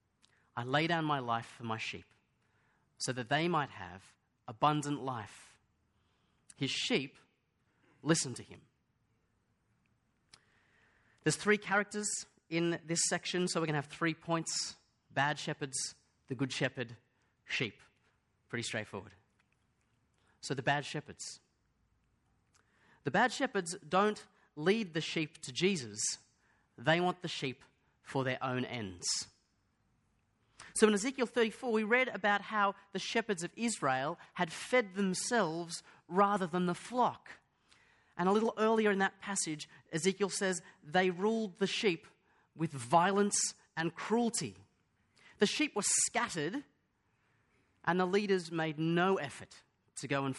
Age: 30-49